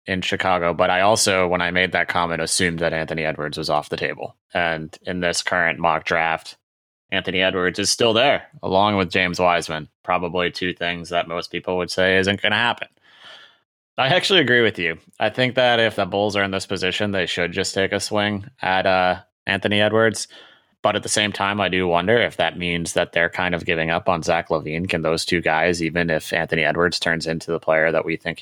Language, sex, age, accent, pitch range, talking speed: English, male, 20-39, American, 85-100 Hz, 220 wpm